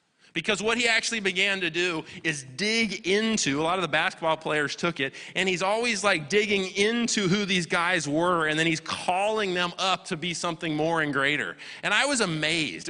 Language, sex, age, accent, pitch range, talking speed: English, male, 30-49, American, 150-190 Hz, 205 wpm